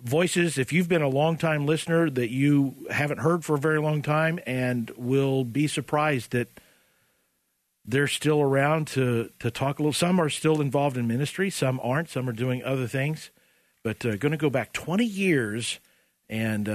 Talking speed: 185 wpm